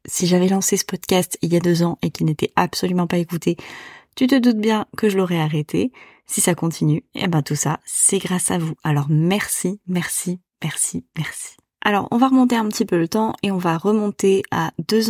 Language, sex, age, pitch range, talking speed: French, female, 20-39, 170-210 Hz, 225 wpm